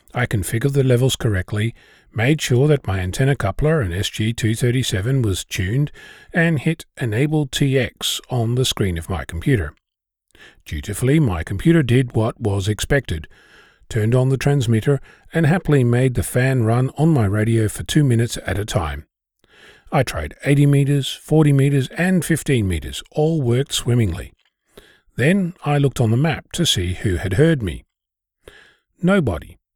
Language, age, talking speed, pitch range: English, 40-59, 155 wpm, 110-150 Hz